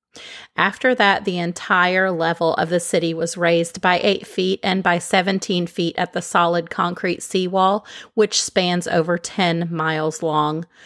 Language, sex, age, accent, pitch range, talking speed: English, female, 30-49, American, 170-200 Hz, 155 wpm